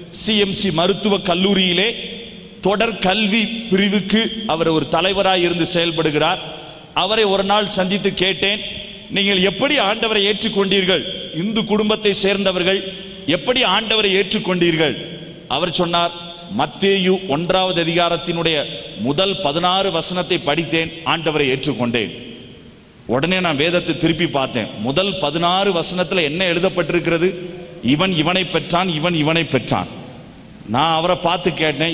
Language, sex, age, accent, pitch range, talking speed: Tamil, male, 40-59, native, 165-195 Hz, 60 wpm